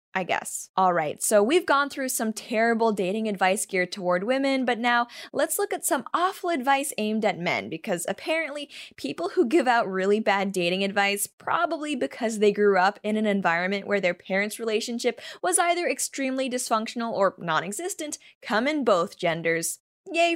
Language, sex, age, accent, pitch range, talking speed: English, female, 10-29, American, 195-275 Hz, 170 wpm